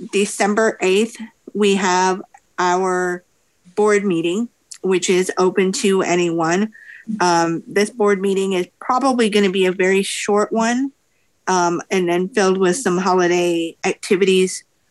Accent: American